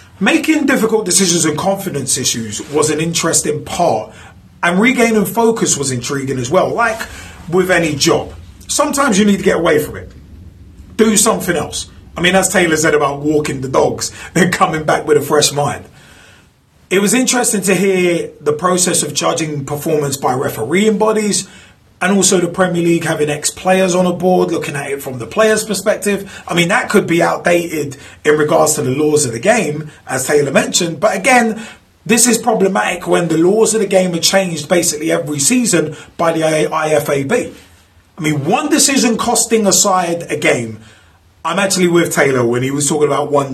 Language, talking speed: English, 185 wpm